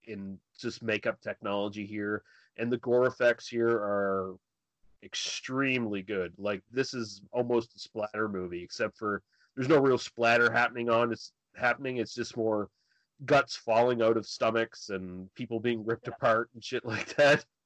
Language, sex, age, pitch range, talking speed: English, male, 30-49, 110-130 Hz, 160 wpm